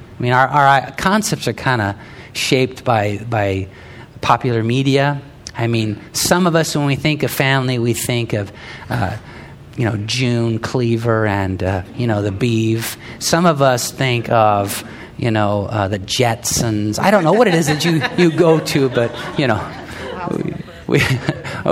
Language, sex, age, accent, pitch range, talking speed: English, male, 50-69, American, 115-165 Hz, 175 wpm